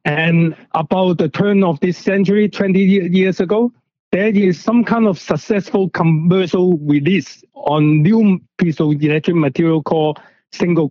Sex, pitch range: male, 145-185 Hz